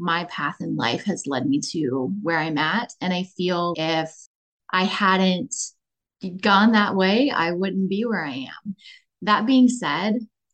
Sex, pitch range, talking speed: female, 175-205 Hz, 165 wpm